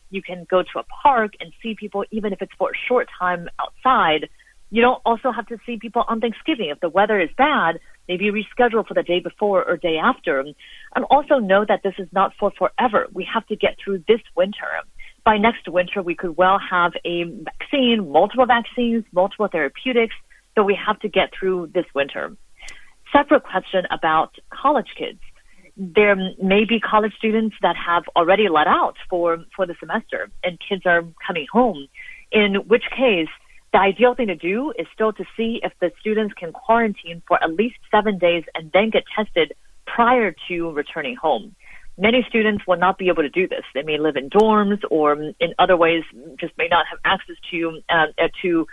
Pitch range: 175-225 Hz